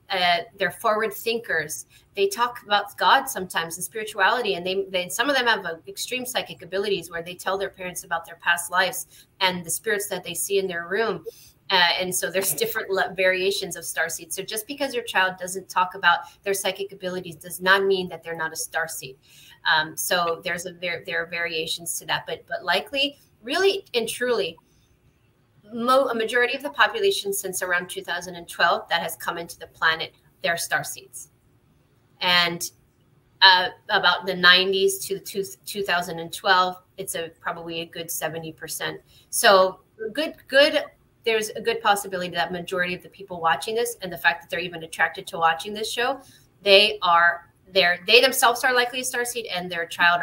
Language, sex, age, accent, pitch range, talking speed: English, female, 30-49, American, 170-205 Hz, 180 wpm